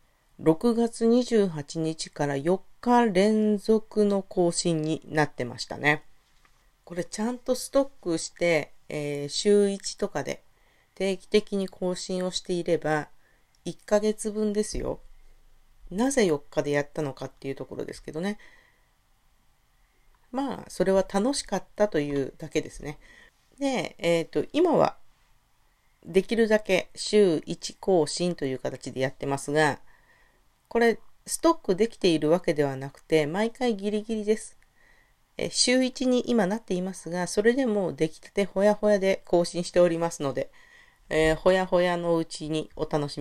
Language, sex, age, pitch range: Japanese, female, 40-59, 155-220 Hz